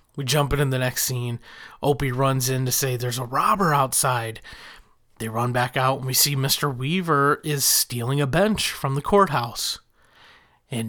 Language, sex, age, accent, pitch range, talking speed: English, male, 30-49, American, 125-165 Hz, 175 wpm